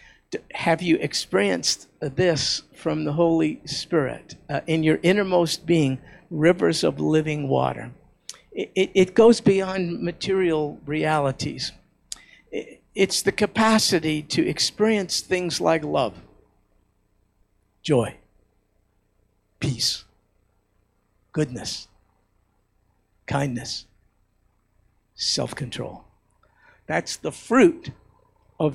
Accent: American